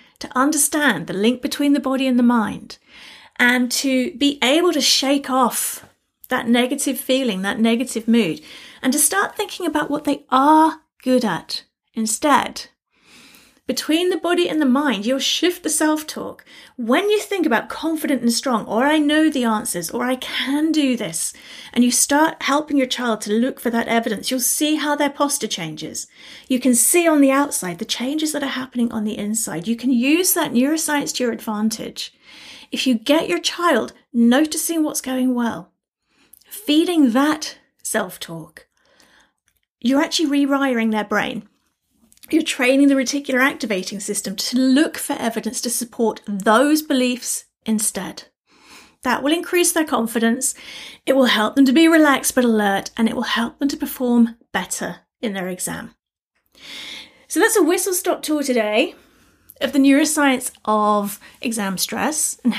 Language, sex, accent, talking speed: English, female, British, 165 wpm